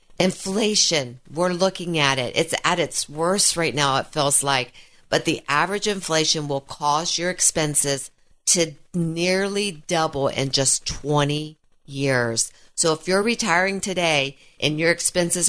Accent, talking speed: American, 145 wpm